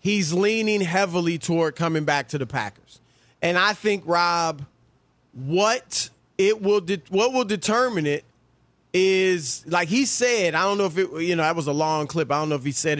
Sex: male